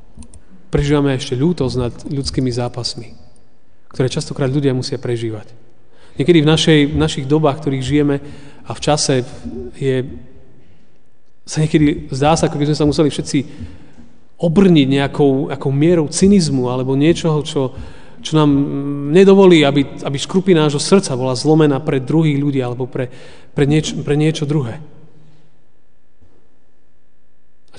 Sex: male